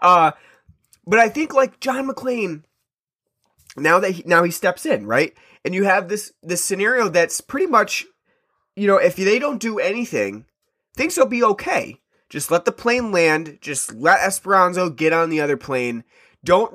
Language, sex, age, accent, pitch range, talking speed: English, male, 20-39, American, 145-220 Hz, 175 wpm